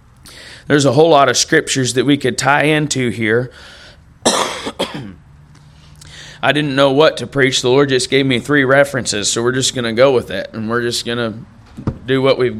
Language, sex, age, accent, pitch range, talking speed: English, male, 30-49, American, 125-150 Hz, 185 wpm